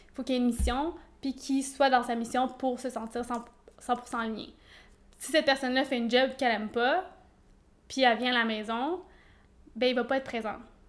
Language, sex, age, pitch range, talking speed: French, female, 20-39, 235-255 Hz, 220 wpm